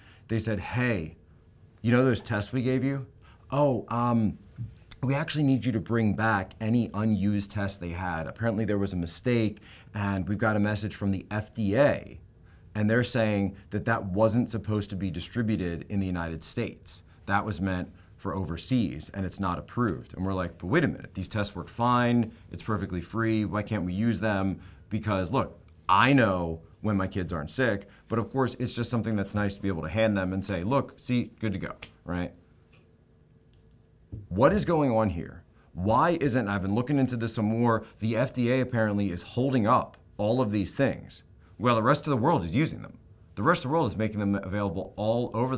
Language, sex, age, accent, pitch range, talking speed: English, male, 30-49, American, 95-120 Hz, 205 wpm